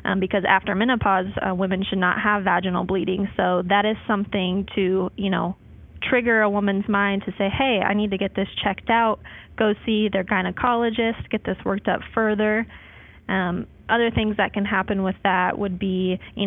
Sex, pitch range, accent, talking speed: female, 190-215 Hz, American, 190 wpm